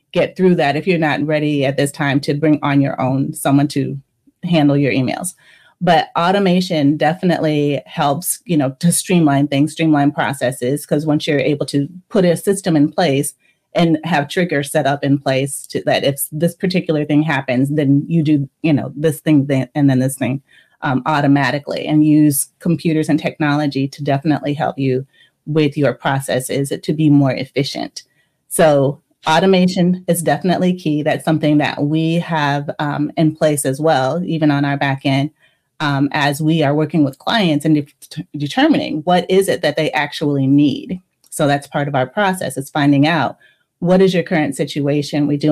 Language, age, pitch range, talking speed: English, 30-49, 140-160 Hz, 185 wpm